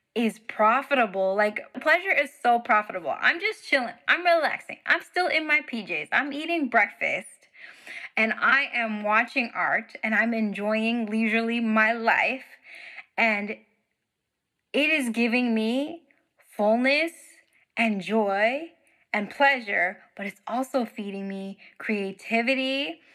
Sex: female